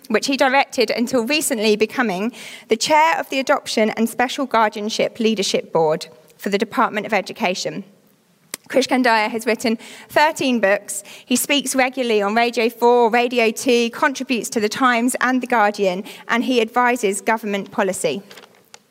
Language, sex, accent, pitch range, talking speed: English, female, British, 210-270 Hz, 145 wpm